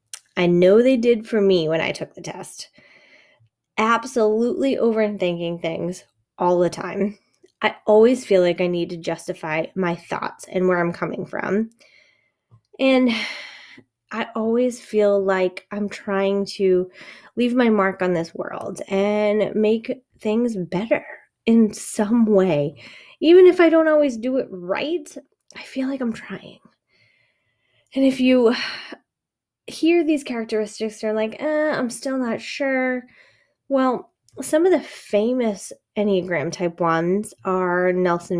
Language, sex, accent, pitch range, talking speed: English, female, American, 185-240 Hz, 140 wpm